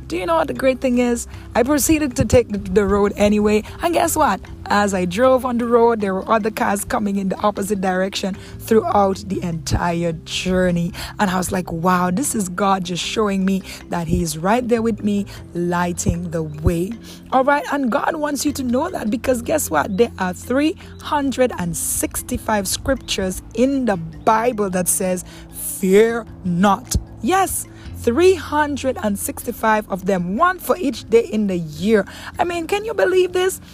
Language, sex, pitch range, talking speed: English, female, 195-270 Hz, 180 wpm